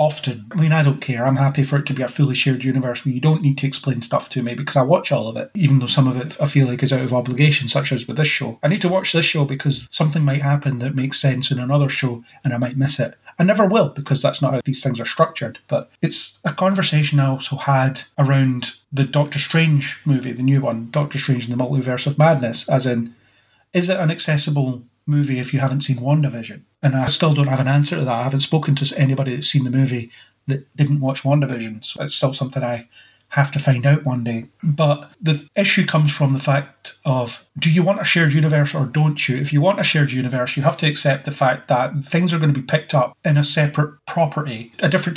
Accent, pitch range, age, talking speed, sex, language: British, 130-150 Hz, 30-49, 250 wpm, male, English